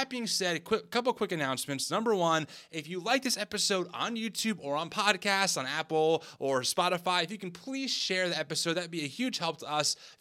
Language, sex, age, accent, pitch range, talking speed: English, male, 20-39, American, 155-210 Hz, 225 wpm